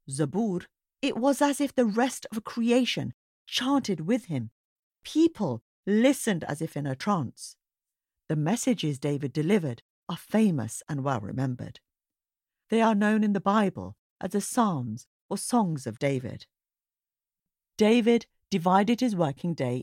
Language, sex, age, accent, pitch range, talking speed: English, female, 50-69, British, 140-220 Hz, 135 wpm